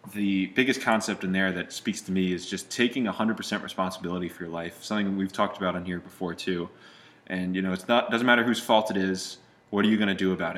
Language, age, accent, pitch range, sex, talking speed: English, 20-39, American, 95-105 Hz, male, 255 wpm